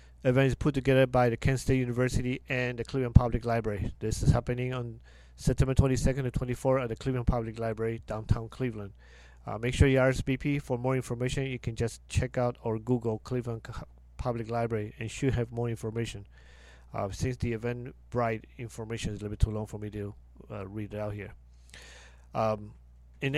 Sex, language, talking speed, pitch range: male, English, 195 wpm, 105-130 Hz